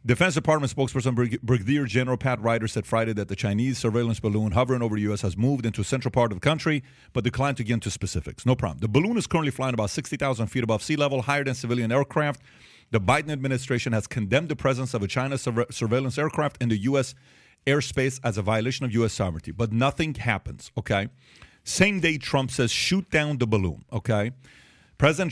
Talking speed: 210 wpm